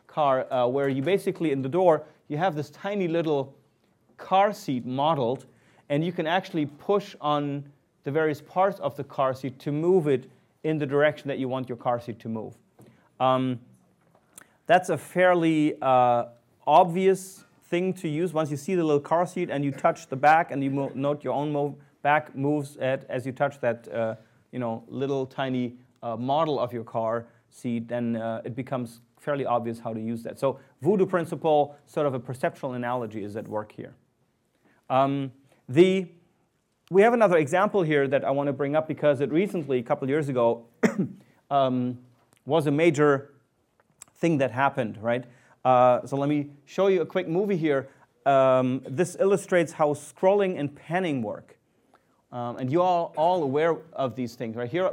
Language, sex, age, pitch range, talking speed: English, male, 30-49, 130-165 Hz, 180 wpm